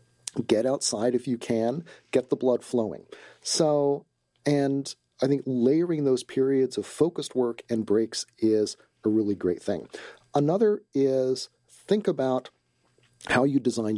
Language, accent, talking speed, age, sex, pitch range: English, American, 140 wpm, 40-59, male, 110-135 Hz